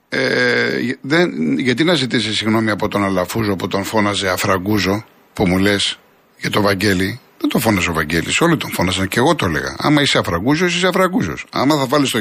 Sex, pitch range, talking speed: male, 110-165 Hz, 185 wpm